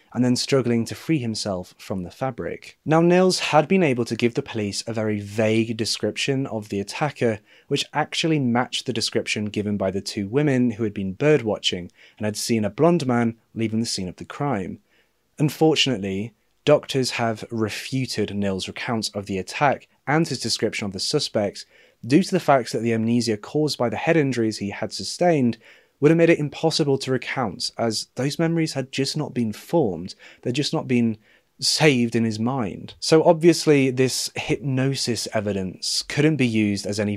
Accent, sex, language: British, male, English